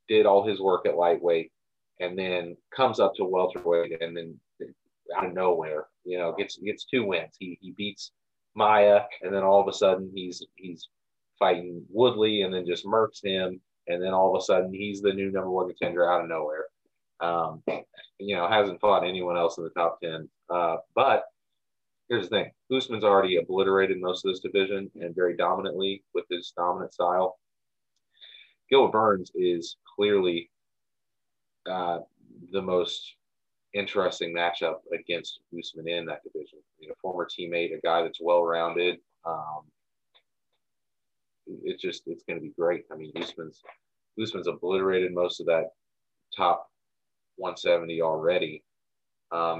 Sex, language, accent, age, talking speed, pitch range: male, English, American, 30-49, 155 wpm, 85-110 Hz